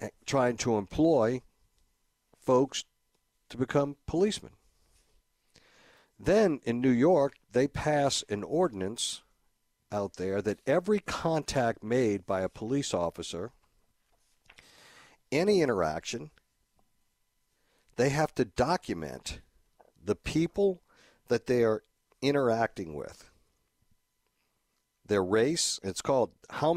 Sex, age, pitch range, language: male, 50-69, 100-135 Hz, English